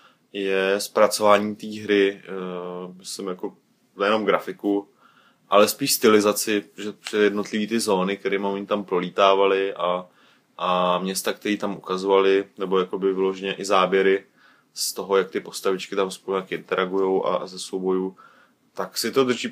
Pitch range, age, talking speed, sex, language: 95-105 Hz, 20-39, 150 wpm, male, Czech